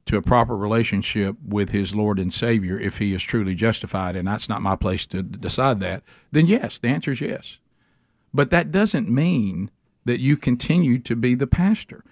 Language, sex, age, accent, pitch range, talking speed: English, male, 50-69, American, 105-135 Hz, 195 wpm